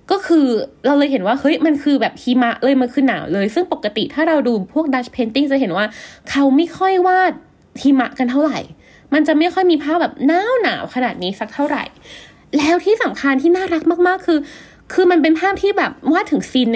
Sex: female